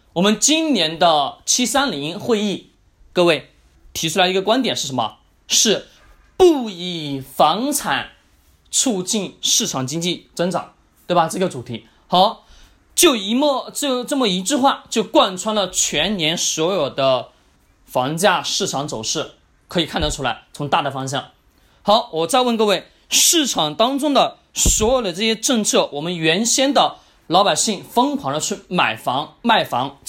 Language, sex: Chinese, male